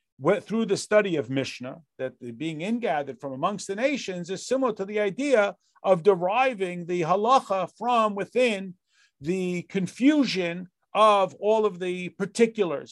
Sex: male